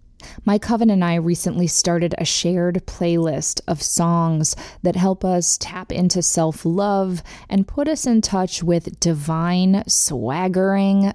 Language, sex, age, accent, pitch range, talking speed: English, female, 20-39, American, 160-195 Hz, 135 wpm